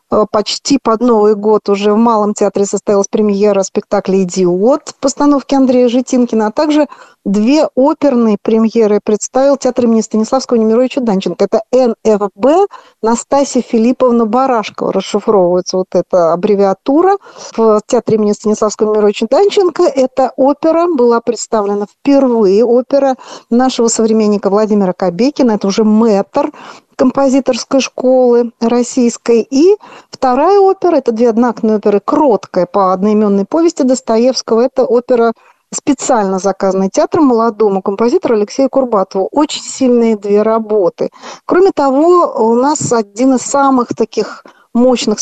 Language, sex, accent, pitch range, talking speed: Russian, female, native, 210-270 Hz, 125 wpm